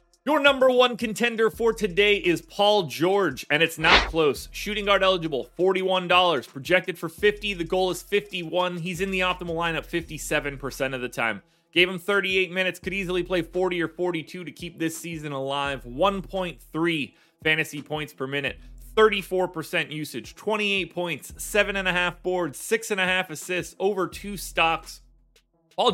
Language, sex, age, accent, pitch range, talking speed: English, male, 30-49, American, 150-190 Hz, 165 wpm